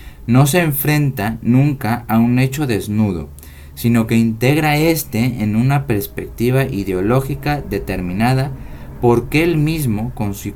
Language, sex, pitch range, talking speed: Spanish, male, 100-135 Hz, 130 wpm